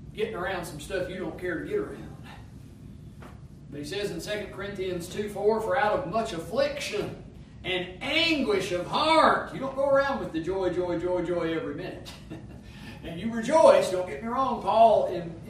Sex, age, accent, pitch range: male, 40-59, American, 155-210 Hz